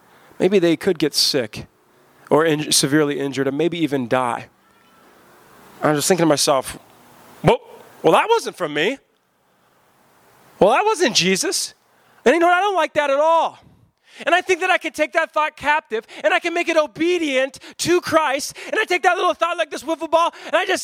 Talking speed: 200 wpm